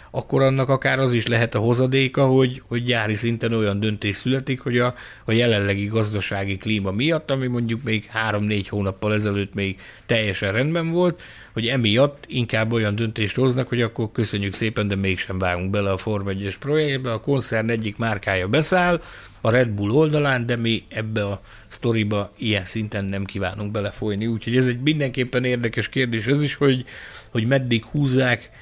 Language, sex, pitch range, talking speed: Hungarian, male, 100-130 Hz, 170 wpm